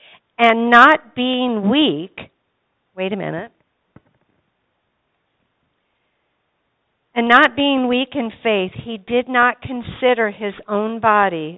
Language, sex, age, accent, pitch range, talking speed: English, female, 50-69, American, 205-285 Hz, 105 wpm